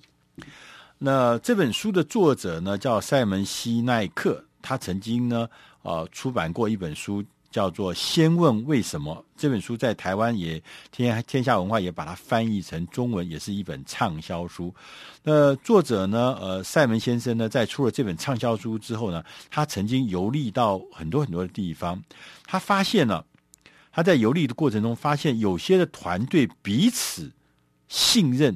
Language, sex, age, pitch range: Chinese, male, 50-69, 100-150 Hz